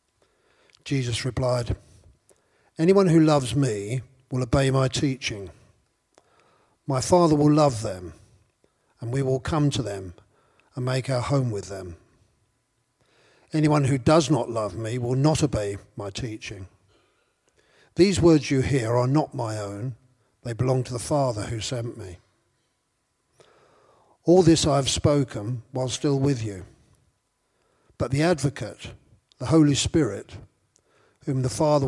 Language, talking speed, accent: English, 135 wpm, British